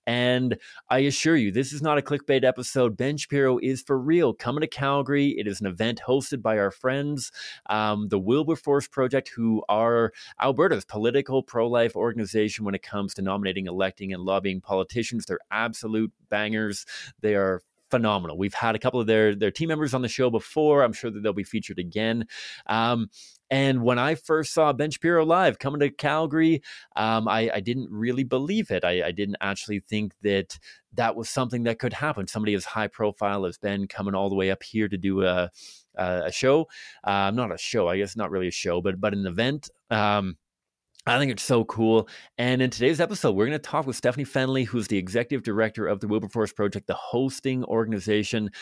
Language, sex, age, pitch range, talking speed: English, male, 30-49, 100-130 Hz, 200 wpm